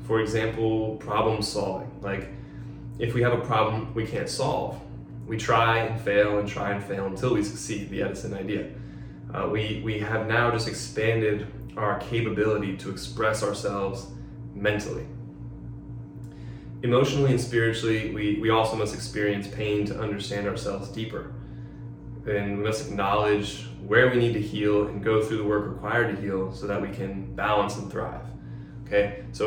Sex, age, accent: male, 20-39, American